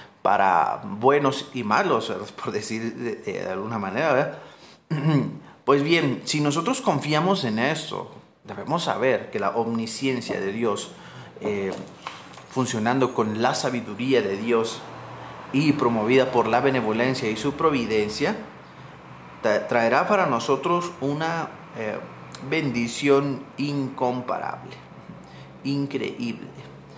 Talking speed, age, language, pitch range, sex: 105 wpm, 30-49, Spanish, 110-140 Hz, male